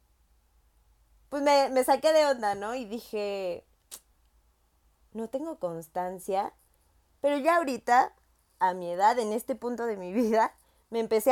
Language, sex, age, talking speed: Spanish, female, 20-39, 140 wpm